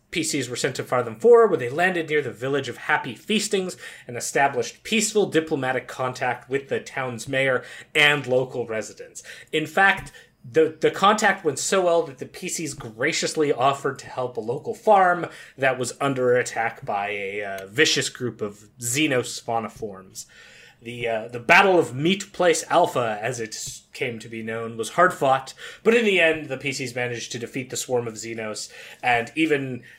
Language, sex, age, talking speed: English, male, 30-49, 180 wpm